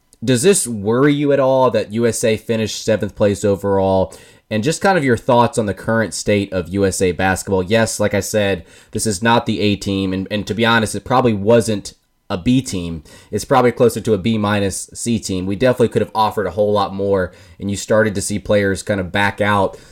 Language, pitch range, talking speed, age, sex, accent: English, 95-115 Hz, 225 wpm, 20-39, male, American